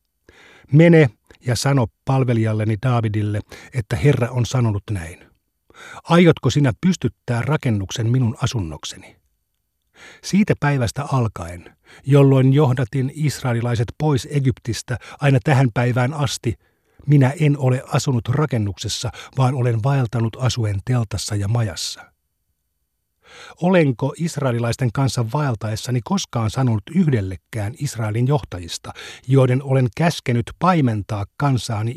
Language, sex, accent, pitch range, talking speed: Finnish, male, native, 105-140 Hz, 100 wpm